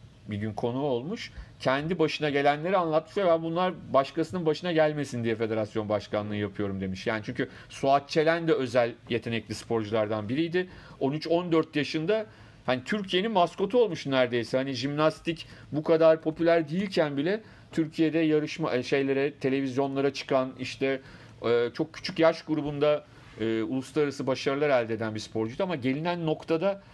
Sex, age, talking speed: male, 40-59, 135 wpm